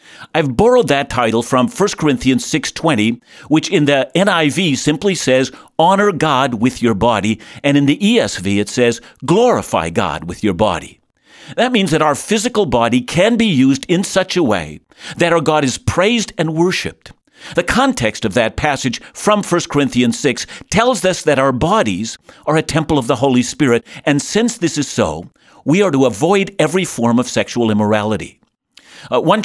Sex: male